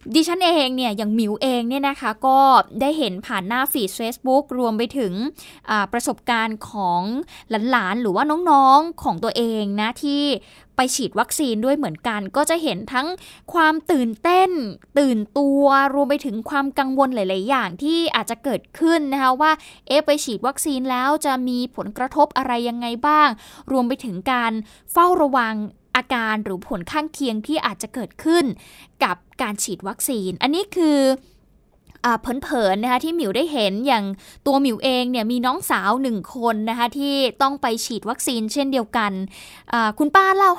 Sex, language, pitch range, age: female, Thai, 230-295 Hz, 10-29